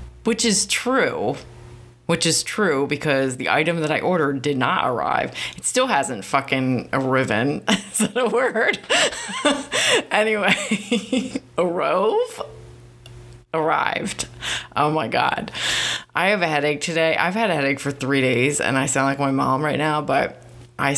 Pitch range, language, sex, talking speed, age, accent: 120-165 Hz, English, female, 145 wpm, 30-49, American